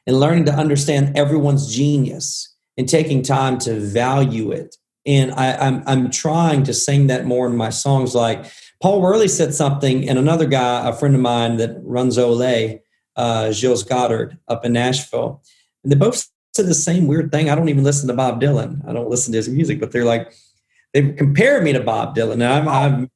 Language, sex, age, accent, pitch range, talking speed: English, male, 40-59, American, 125-160 Hz, 200 wpm